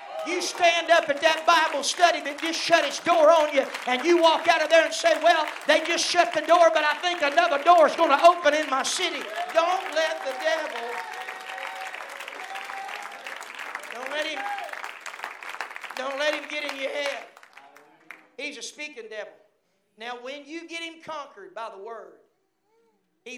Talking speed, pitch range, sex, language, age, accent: 175 wpm, 265-325 Hz, male, English, 50-69, American